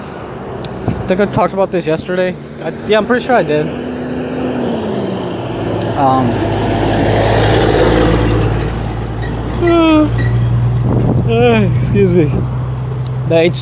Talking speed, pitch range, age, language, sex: 75 wpm, 120-175 Hz, 20-39, English, male